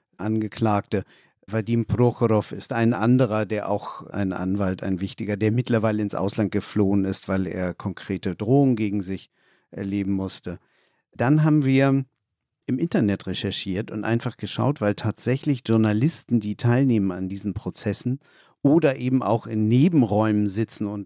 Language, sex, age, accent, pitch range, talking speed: German, male, 50-69, German, 105-130 Hz, 140 wpm